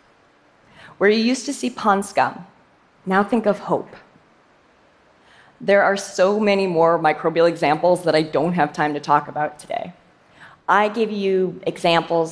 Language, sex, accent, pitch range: Korean, female, American, 170-240 Hz